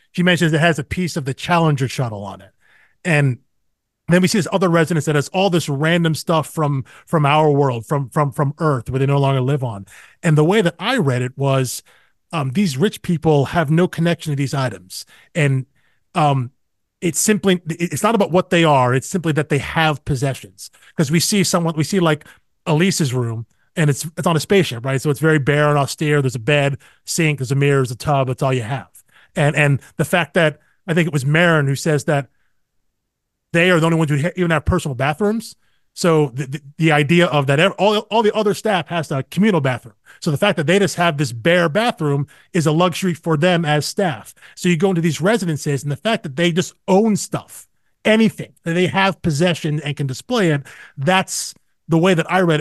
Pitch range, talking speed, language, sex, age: 140-175 Hz, 220 wpm, English, male, 30-49